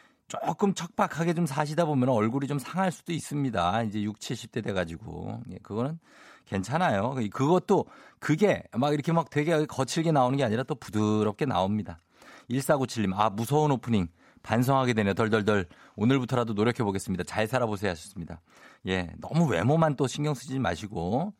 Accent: native